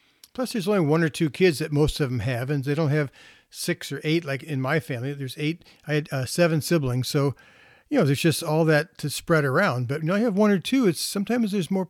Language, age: English, 50-69